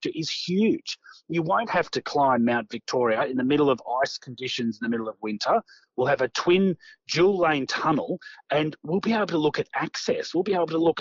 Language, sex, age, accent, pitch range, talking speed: English, male, 30-49, Australian, 130-180 Hz, 220 wpm